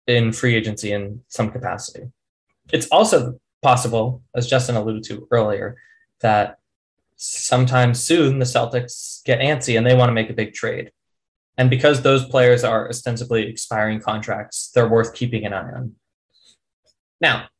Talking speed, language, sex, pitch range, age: 150 wpm, English, male, 110-130 Hz, 20-39